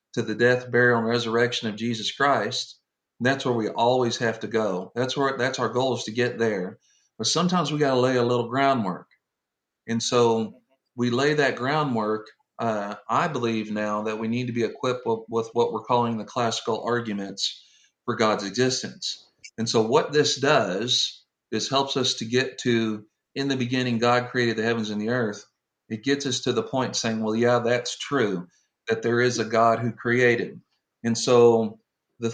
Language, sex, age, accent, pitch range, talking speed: English, male, 40-59, American, 115-130 Hz, 190 wpm